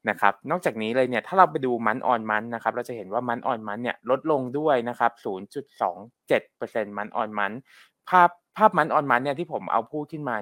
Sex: male